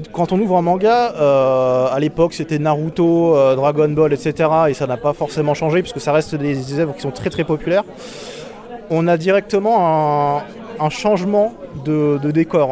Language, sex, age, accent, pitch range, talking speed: French, male, 20-39, French, 145-175 Hz, 190 wpm